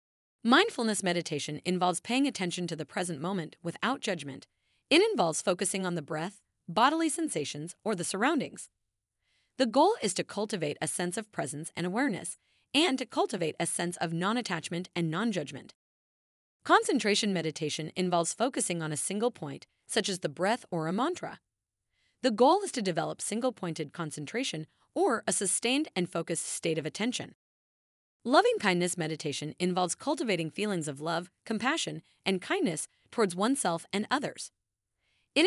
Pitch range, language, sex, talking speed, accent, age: 165-245 Hz, English, female, 145 wpm, American, 30-49